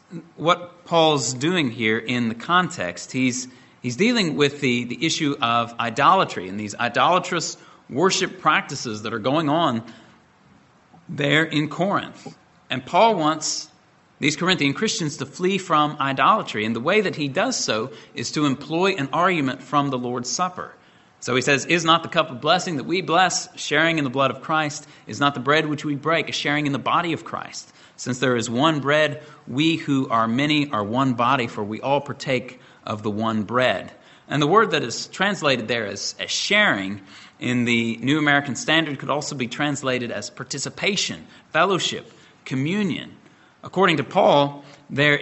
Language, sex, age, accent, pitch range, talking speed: English, male, 30-49, American, 125-160 Hz, 175 wpm